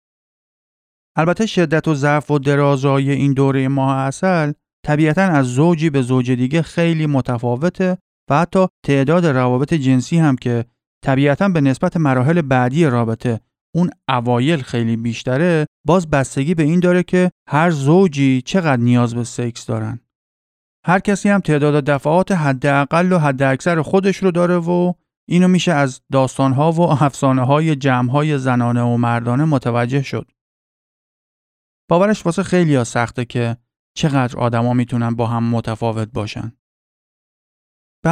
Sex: male